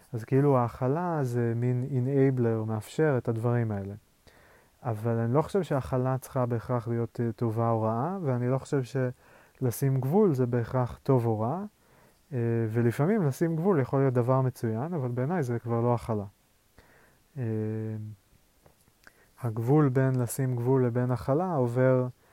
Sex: male